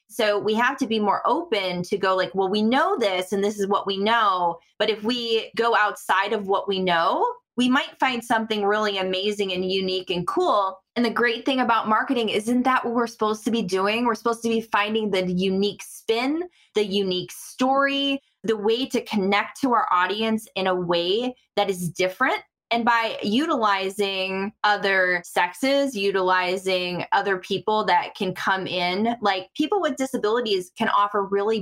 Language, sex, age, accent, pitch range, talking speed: English, female, 20-39, American, 190-240 Hz, 180 wpm